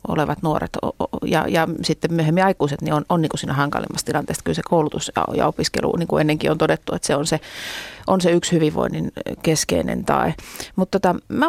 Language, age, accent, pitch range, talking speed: Finnish, 30-49, native, 155-220 Hz, 190 wpm